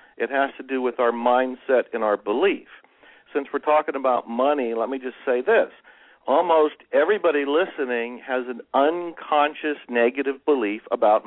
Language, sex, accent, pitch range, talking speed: English, male, American, 120-150 Hz, 155 wpm